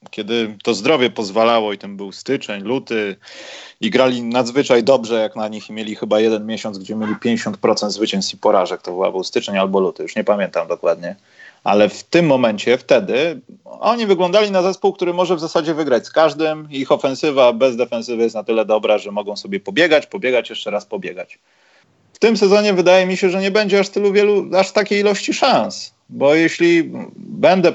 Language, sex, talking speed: Polish, male, 190 wpm